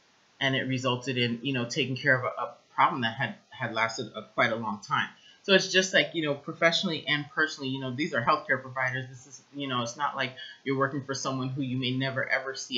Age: 30-49